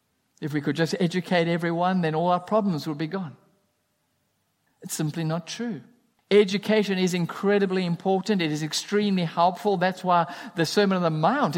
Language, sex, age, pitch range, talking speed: English, male, 50-69, 170-230 Hz, 165 wpm